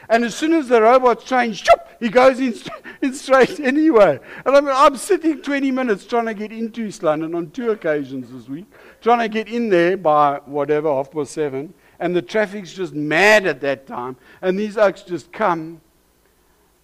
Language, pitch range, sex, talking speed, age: English, 130-210 Hz, male, 185 wpm, 60-79